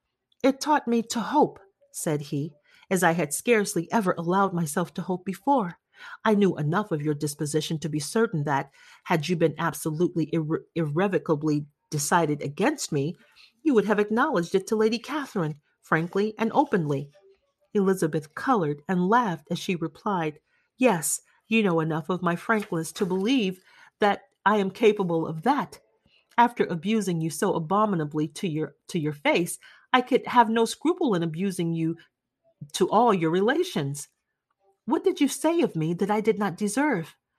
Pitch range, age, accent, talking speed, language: 160-230 Hz, 40-59, American, 160 wpm, English